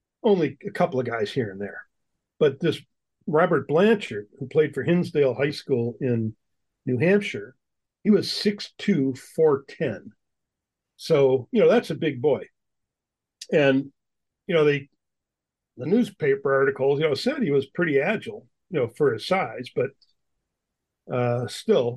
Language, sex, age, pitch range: English, male, 50-69, 130-170 Hz